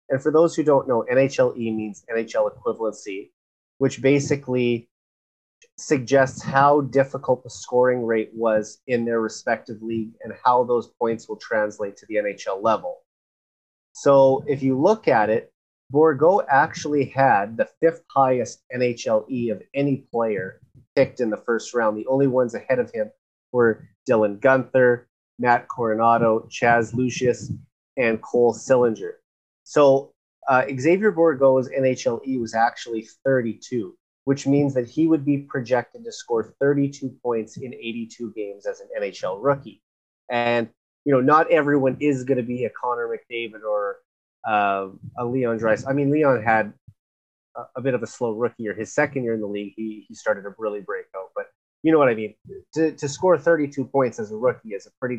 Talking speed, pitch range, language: 170 wpm, 115-150 Hz, English